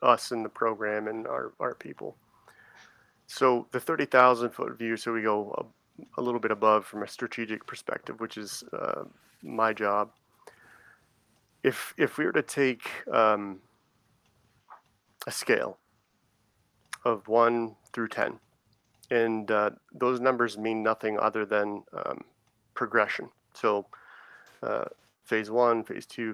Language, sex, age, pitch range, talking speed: English, male, 30-49, 105-120 Hz, 135 wpm